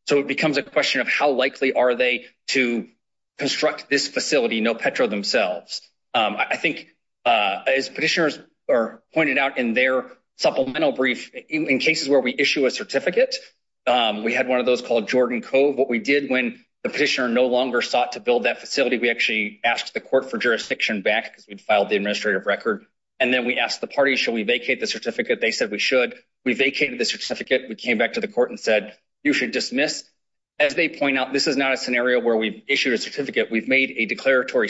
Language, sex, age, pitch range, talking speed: English, male, 30-49, 120-170 Hz, 215 wpm